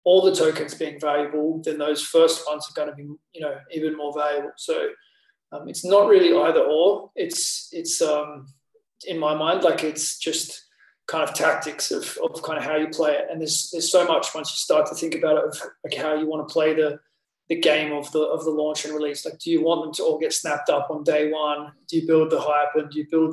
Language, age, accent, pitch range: English, 20-39, Australian, 150-170 Hz